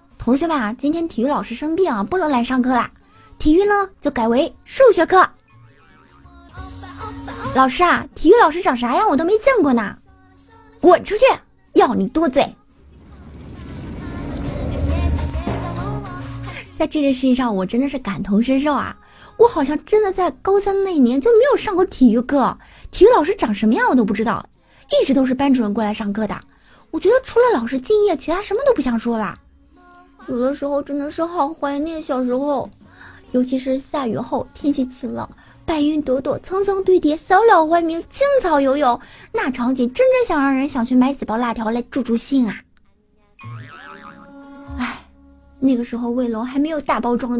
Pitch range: 225-330 Hz